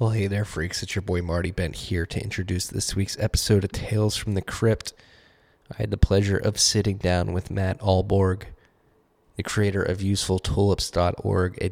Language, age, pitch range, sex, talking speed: English, 20-39, 90-105 Hz, male, 180 wpm